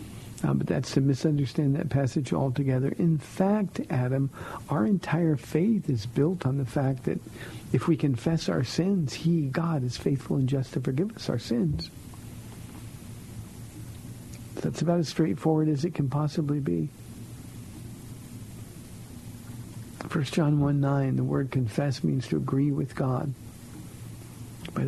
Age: 60-79